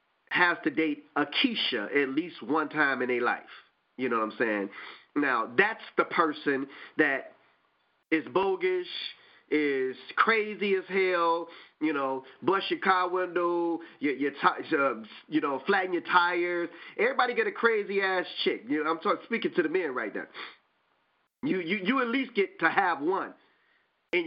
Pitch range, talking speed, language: 155-215 Hz, 170 wpm, English